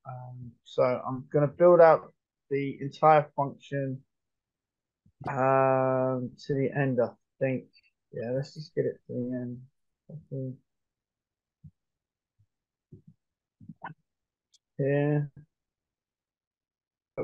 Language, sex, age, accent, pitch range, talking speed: English, male, 20-39, British, 135-160 Hz, 85 wpm